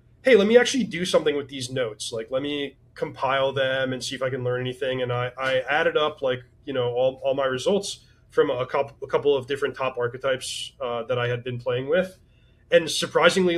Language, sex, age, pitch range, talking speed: English, male, 20-39, 120-150 Hz, 230 wpm